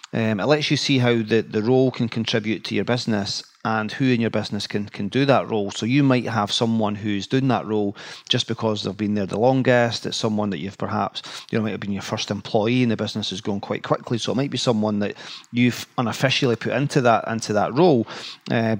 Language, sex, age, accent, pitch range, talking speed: English, male, 40-59, British, 105-125 Hz, 240 wpm